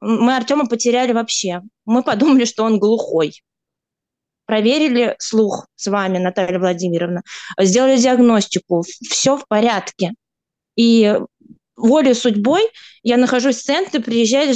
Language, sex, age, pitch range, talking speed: Russian, female, 20-39, 210-260 Hz, 115 wpm